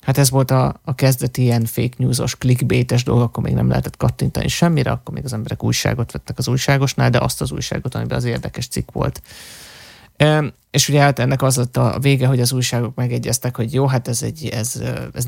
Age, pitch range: 30-49, 120-140 Hz